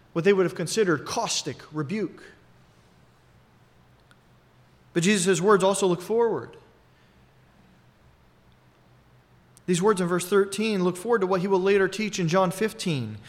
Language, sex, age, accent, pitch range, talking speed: English, male, 40-59, American, 130-195 Hz, 130 wpm